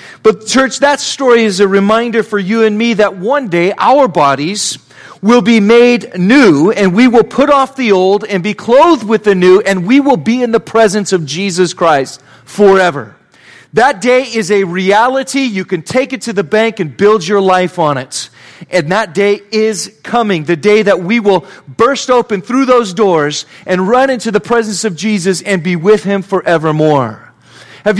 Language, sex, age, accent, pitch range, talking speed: English, male, 40-59, American, 190-245 Hz, 195 wpm